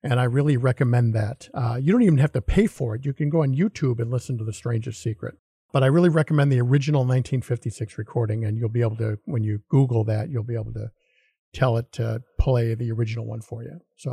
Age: 50-69